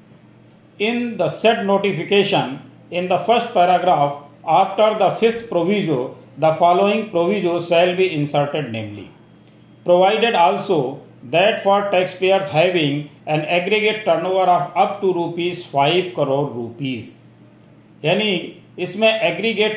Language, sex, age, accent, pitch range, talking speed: Hindi, male, 40-59, native, 150-190 Hz, 110 wpm